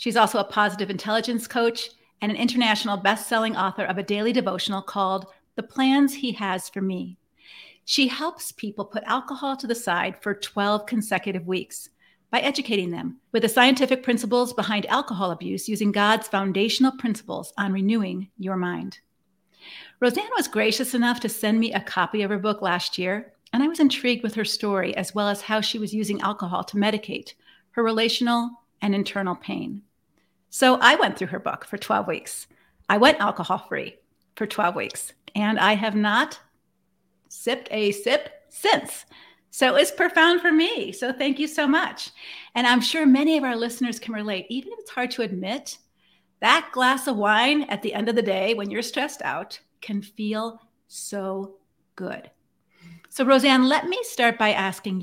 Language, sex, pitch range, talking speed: English, female, 200-255 Hz, 175 wpm